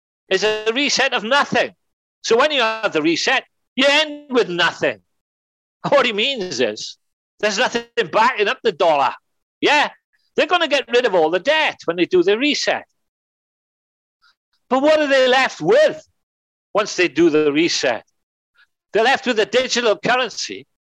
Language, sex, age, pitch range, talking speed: English, male, 60-79, 195-315 Hz, 165 wpm